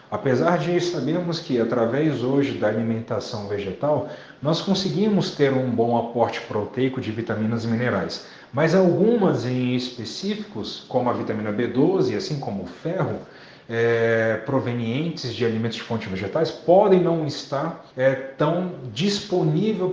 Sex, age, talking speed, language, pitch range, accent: male, 40-59, 140 wpm, Portuguese, 125-175 Hz, Brazilian